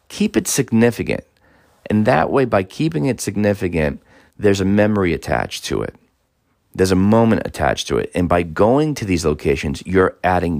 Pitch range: 80-105 Hz